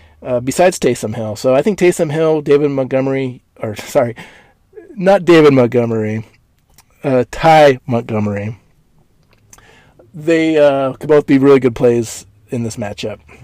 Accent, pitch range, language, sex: American, 120-140 Hz, English, male